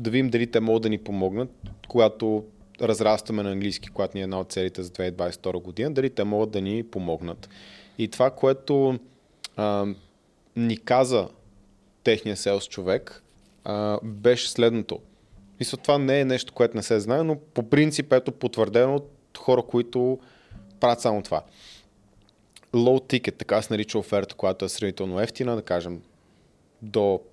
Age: 20-39